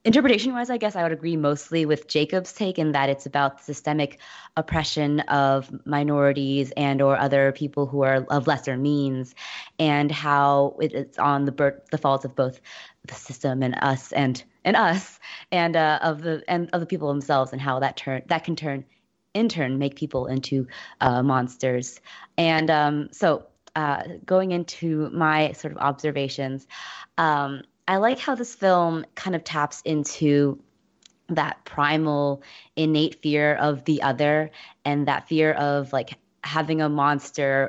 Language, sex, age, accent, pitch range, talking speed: English, female, 20-39, American, 140-160 Hz, 160 wpm